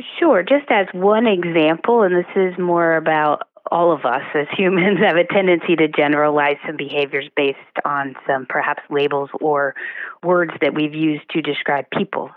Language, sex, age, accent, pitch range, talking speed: English, female, 30-49, American, 145-170 Hz, 170 wpm